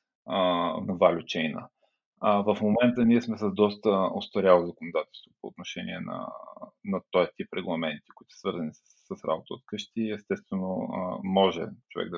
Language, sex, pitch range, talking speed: Bulgarian, male, 95-115 Hz, 145 wpm